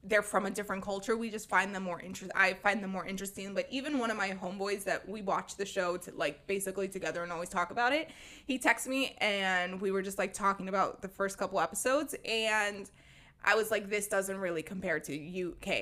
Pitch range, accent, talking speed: 195-230 Hz, American, 230 wpm